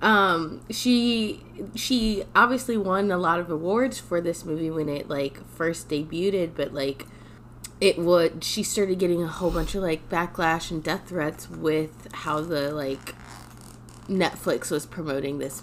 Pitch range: 135-165 Hz